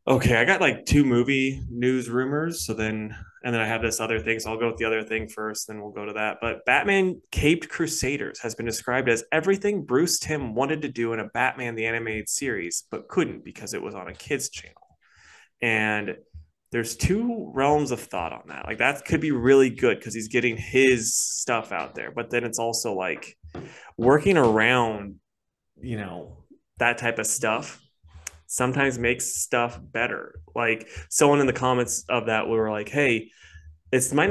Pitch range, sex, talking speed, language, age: 110-130 Hz, male, 190 wpm, English, 20-39